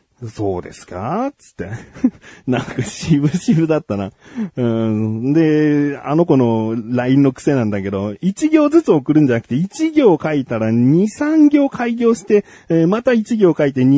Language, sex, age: Japanese, male, 40-59